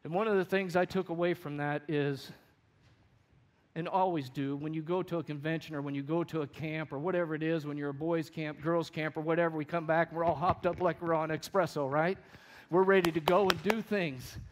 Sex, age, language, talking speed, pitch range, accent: male, 50-69, English, 250 wpm, 140-185 Hz, American